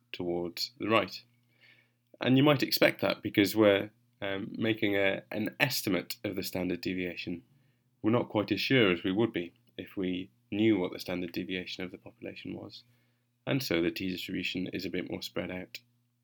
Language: English